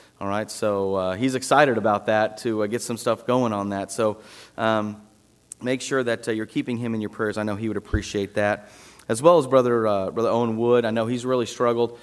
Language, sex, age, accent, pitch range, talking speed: English, male, 30-49, American, 100-120 Hz, 235 wpm